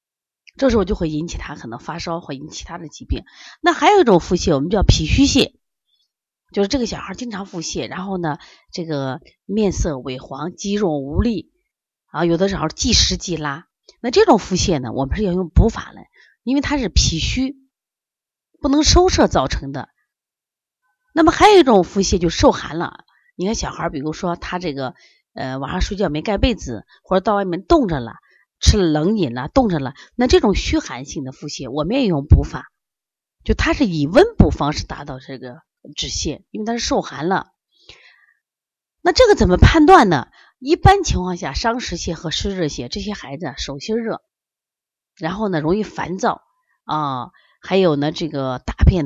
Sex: female